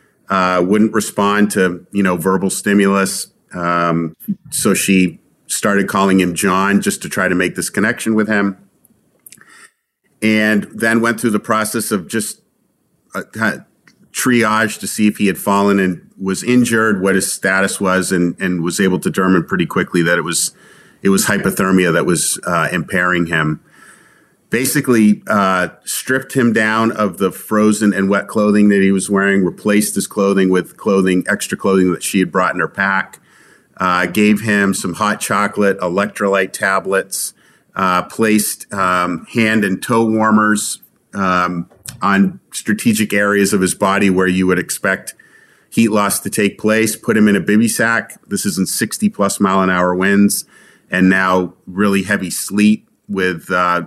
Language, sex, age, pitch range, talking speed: English, male, 40-59, 95-105 Hz, 165 wpm